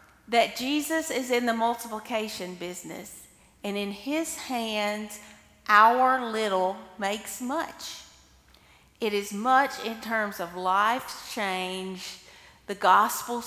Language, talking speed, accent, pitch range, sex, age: English, 110 wpm, American, 185-250 Hz, female, 40-59